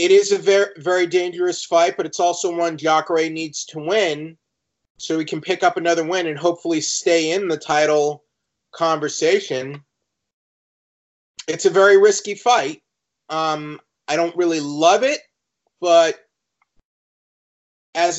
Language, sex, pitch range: English, male, 155-210 Hz